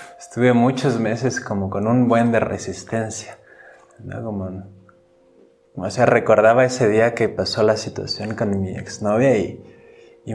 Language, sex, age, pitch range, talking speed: Spanish, male, 20-39, 105-130 Hz, 145 wpm